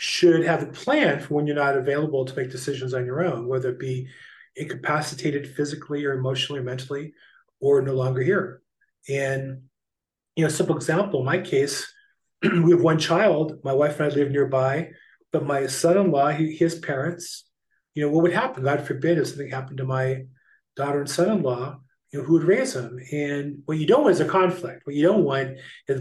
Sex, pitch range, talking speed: male, 135-165 Hz, 200 wpm